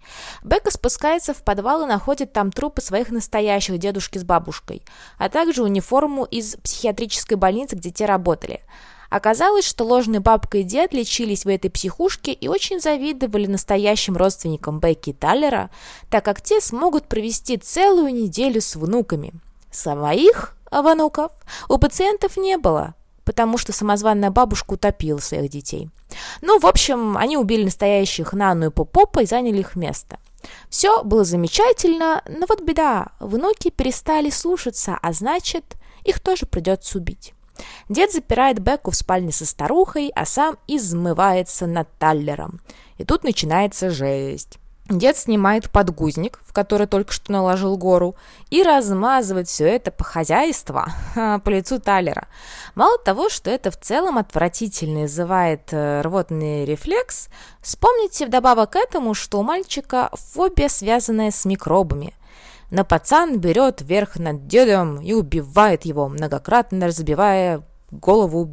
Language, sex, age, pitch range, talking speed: Russian, female, 20-39, 180-280 Hz, 135 wpm